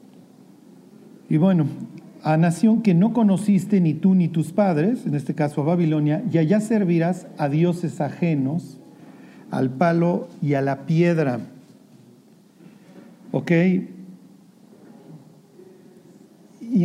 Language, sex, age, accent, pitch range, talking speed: Spanish, male, 50-69, Mexican, 155-195 Hz, 110 wpm